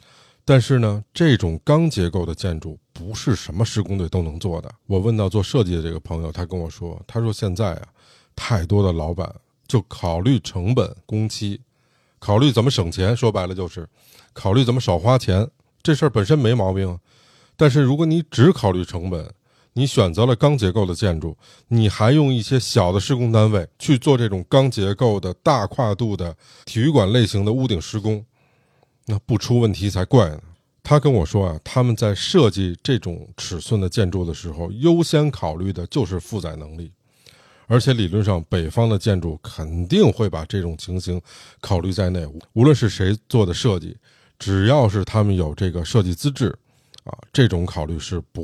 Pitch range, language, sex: 90-125 Hz, Chinese, male